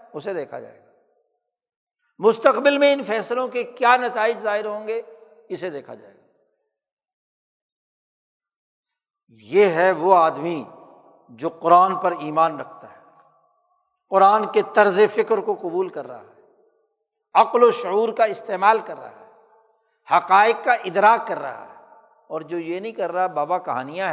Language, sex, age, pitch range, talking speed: Urdu, male, 60-79, 180-280 Hz, 145 wpm